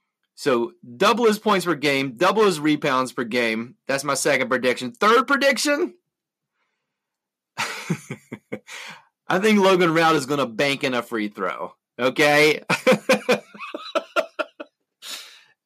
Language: English